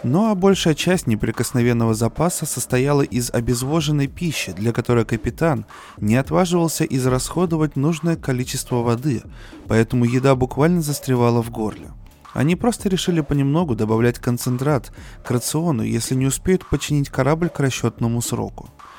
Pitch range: 120-165 Hz